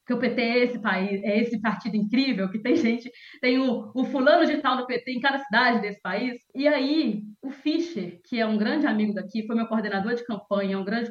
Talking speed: 230 wpm